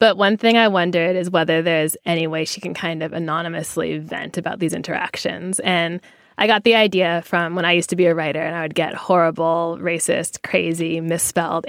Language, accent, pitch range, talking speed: English, American, 165-185 Hz, 205 wpm